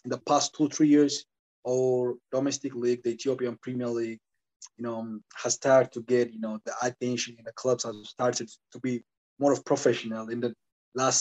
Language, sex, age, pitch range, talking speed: English, male, 20-39, 120-130 Hz, 195 wpm